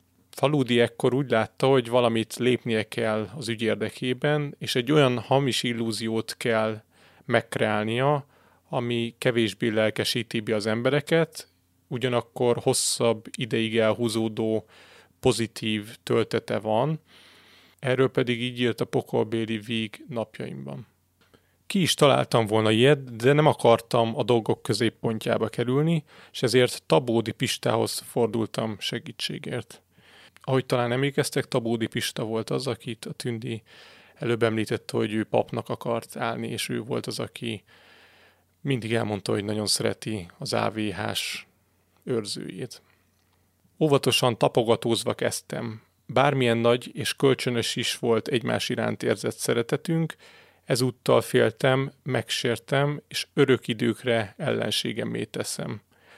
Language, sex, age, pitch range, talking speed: Hungarian, male, 30-49, 110-130 Hz, 115 wpm